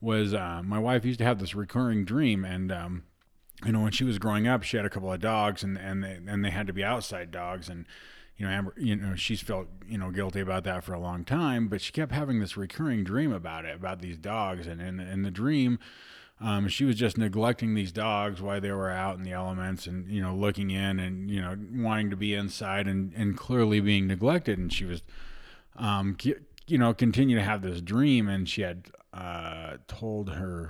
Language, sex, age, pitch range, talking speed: English, male, 30-49, 95-110 Hz, 230 wpm